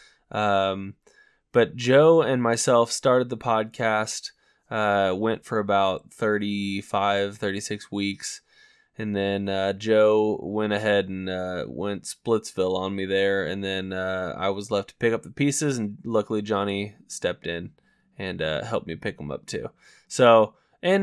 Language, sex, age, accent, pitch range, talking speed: English, male, 20-39, American, 100-130 Hz, 155 wpm